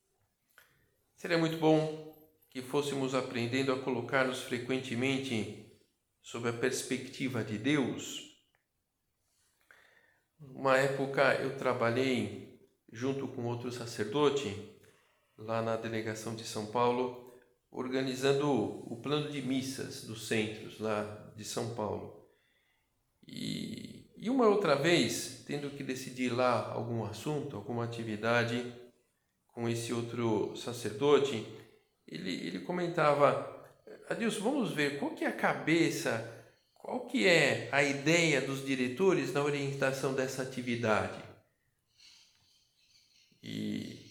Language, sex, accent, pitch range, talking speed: Portuguese, male, Brazilian, 120-155 Hz, 110 wpm